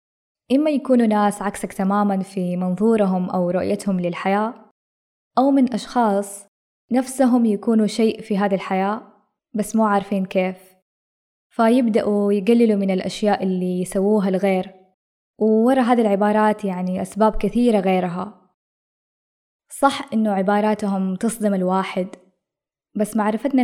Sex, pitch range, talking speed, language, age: female, 190-220 Hz, 110 wpm, Arabic, 20-39